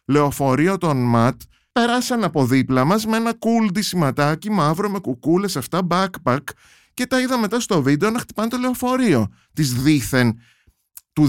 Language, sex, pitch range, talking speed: Greek, male, 120-205 Hz, 145 wpm